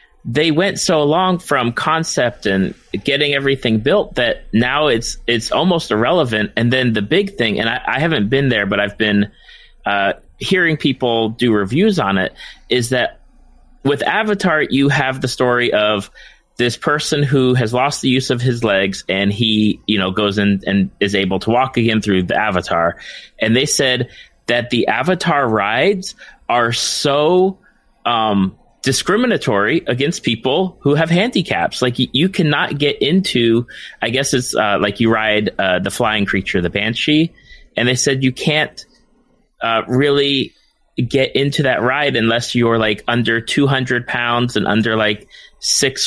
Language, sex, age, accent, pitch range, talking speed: English, male, 30-49, American, 110-145 Hz, 165 wpm